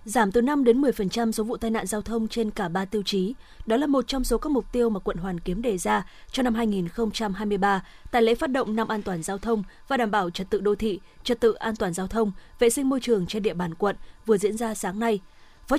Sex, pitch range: female, 200-245 Hz